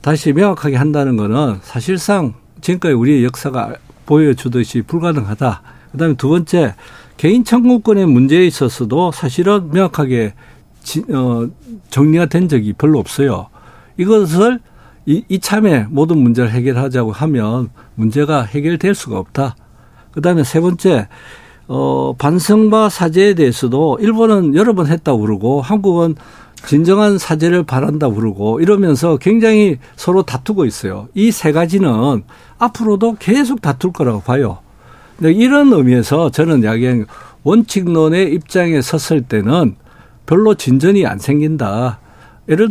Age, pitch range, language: 60-79, 130-190 Hz, Korean